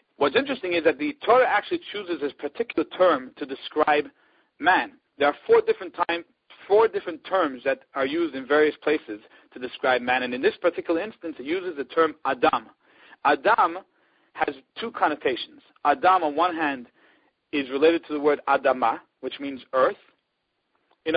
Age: 40-59